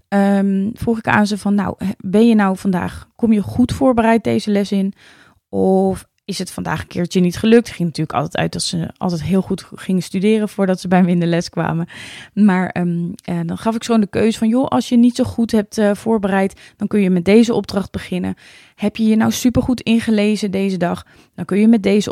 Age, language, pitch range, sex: 20-39, Dutch, 180-225 Hz, female